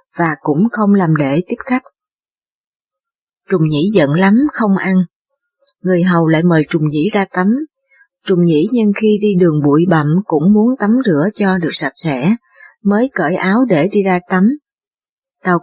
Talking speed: 175 wpm